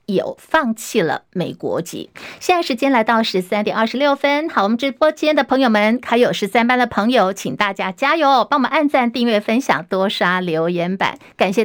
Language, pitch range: Chinese, 205-285 Hz